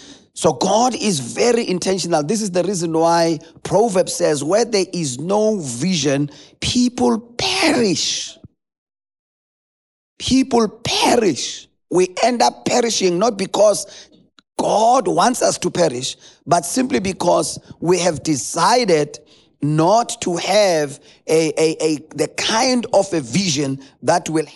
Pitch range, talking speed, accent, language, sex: 150-190 Hz, 115 wpm, South African, English, male